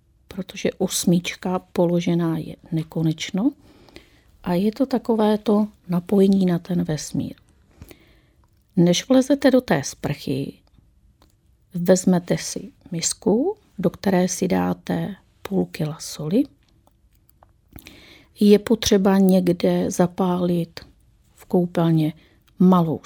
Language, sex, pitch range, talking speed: Czech, female, 165-230 Hz, 95 wpm